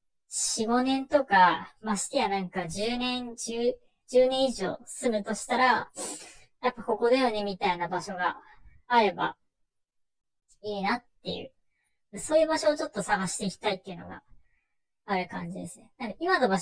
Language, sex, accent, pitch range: Japanese, male, native, 180-245 Hz